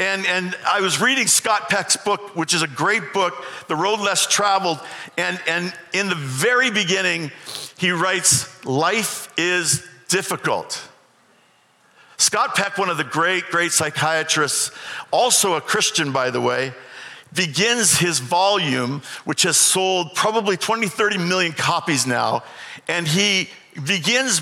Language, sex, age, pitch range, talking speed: English, male, 50-69, 160-210 Hz, 140 wpm